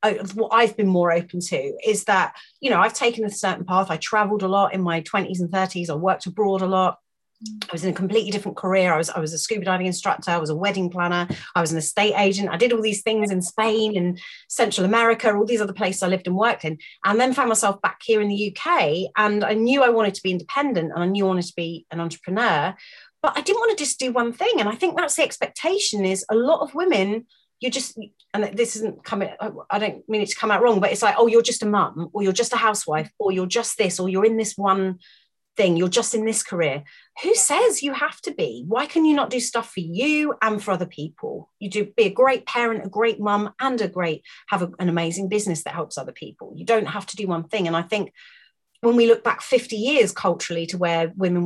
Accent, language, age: British, English, 30-49